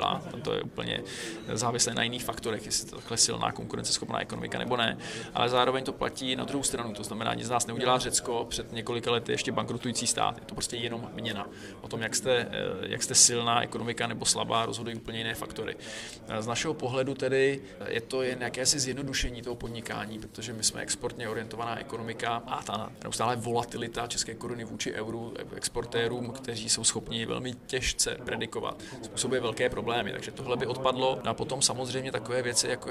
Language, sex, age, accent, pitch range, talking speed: Czech, male, 20-39, native, 115-130 Hz, 185 wpm